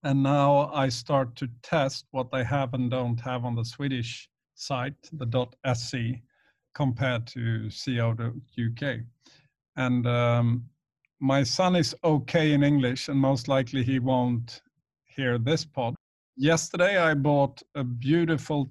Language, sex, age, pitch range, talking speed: English, male, 50-69, 125-155 Hz, 135 wpm